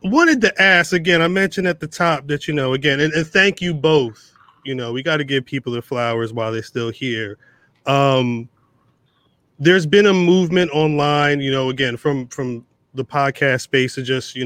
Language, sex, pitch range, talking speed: English, male, 120-155 Hz, 200 wpm